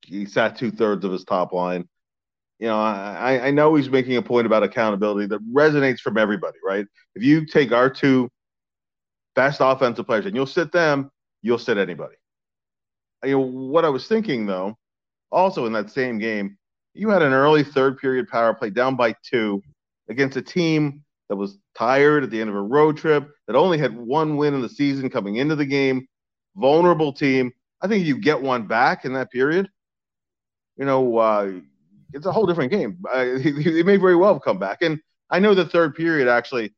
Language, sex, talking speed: English, male, 195 wpm